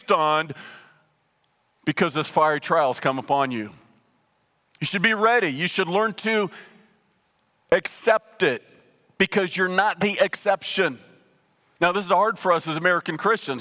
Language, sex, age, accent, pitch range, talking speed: English, male, 40-59, American, 170-205 Hz, 145 wpm